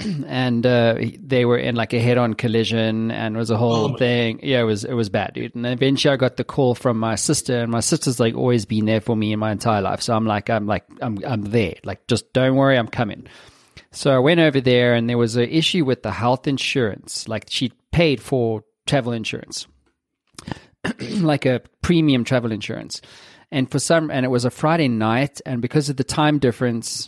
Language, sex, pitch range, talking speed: English, male, 115-135 Hz, 215 wpm